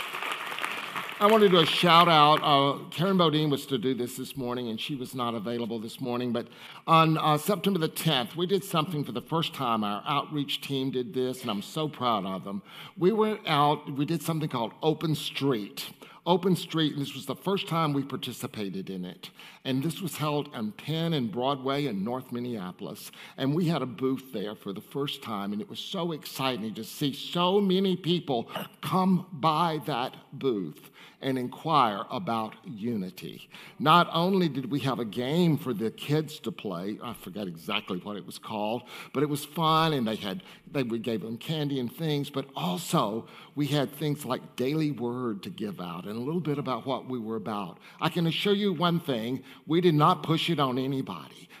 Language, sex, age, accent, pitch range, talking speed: English, male, 50-69, American, 130-170 Hz, 200 wpm